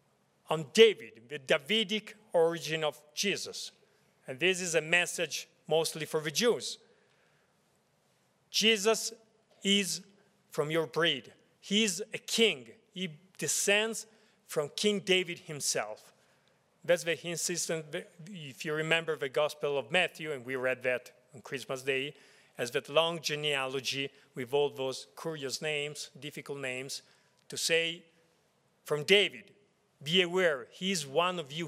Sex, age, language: male, 40-59, English